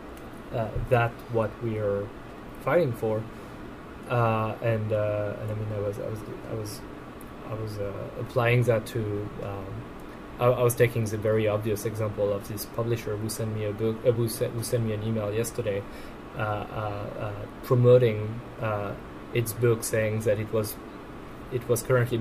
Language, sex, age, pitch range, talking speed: English, male, 20-39, 110-120 Hz, 175 wpm